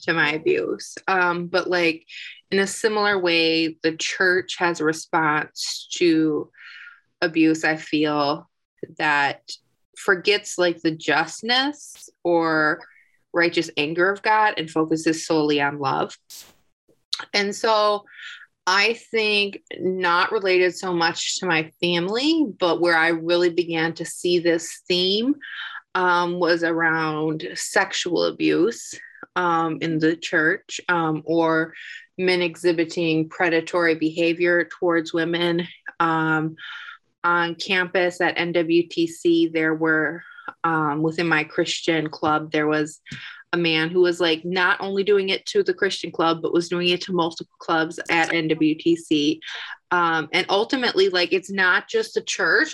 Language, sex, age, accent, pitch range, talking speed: English, female, 20-39, American, 160-195 Hz, 130 wpm